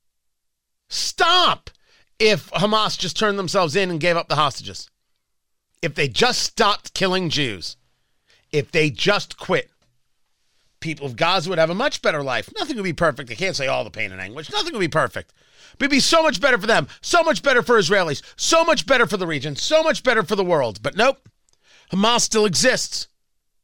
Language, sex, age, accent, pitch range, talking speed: English, male, 40-59, American, 140-215 Hz, 195 wpm